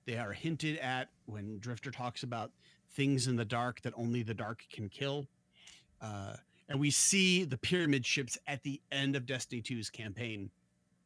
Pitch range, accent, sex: 115-145 Hz, American, male